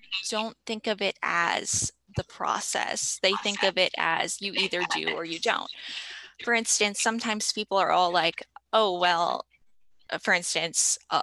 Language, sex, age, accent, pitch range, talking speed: English, female, 10-29, American, 180-225 Hz, 160 wpm